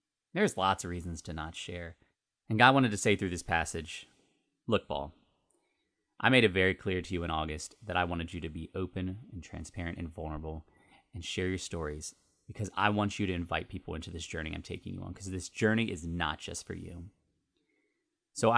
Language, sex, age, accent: English, male, 30-49, American